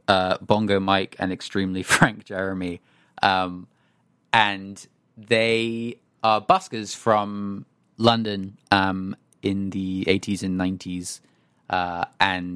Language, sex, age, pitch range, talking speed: English, male, 20-39, 95-120 Hz, 105 wpm